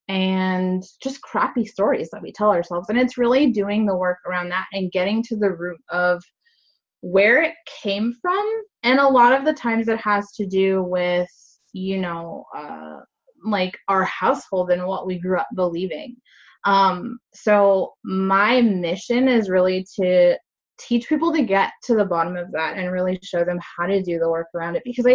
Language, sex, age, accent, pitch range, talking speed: English, female, 20-39, American, 185-245 Hz, 185 wpm